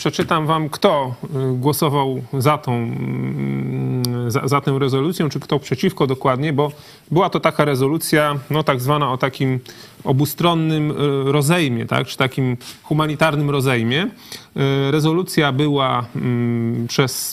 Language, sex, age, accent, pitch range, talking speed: Polish, male, 30-49, native, 135-160 Hz, 105 wpm